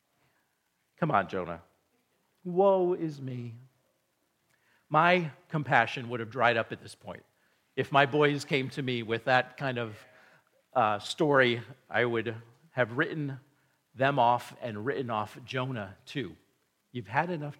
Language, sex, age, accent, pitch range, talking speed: English, male, 50-69, American, 115-165 Hz, 140 wpm